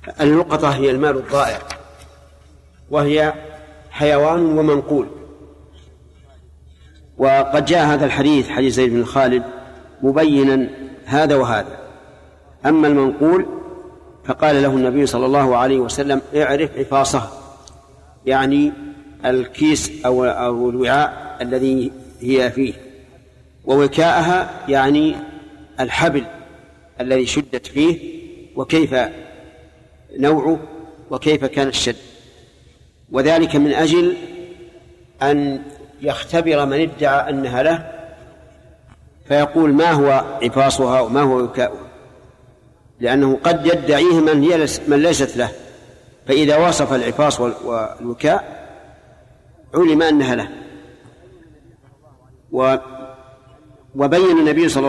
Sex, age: male, 50-69